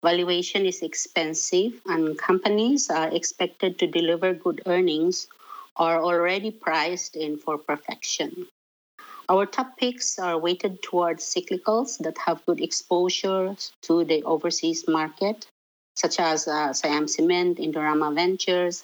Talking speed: 125 wpm